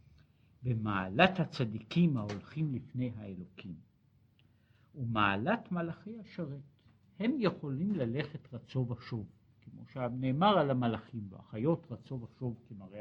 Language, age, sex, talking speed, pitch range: Hebrew, 60-79, male, 95 wpm, 115-175 Hz